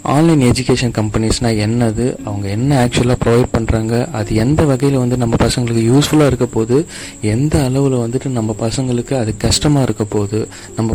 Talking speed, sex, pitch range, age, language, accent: 155 wpm, male, 105-135 Hz, 30-49, Tamil, native